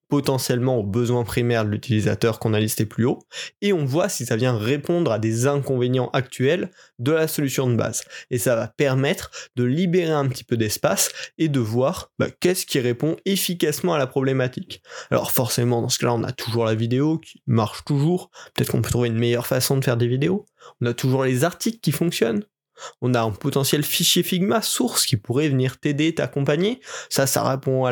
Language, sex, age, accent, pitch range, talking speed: French, male, 20-39, French, 125-165 Hz, 205 wpm